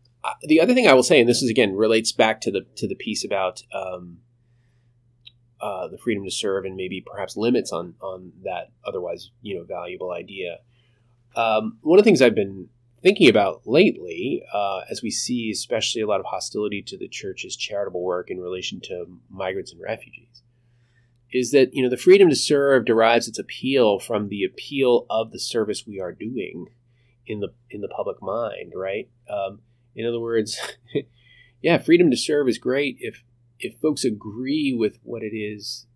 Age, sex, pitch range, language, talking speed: 20-39, male, 105-120 Hz, English, 185 wpm